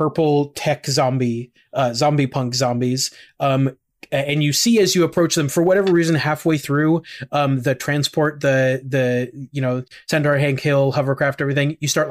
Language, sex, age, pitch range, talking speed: English, male, 30-49, 130-155 Hz, 170 wpm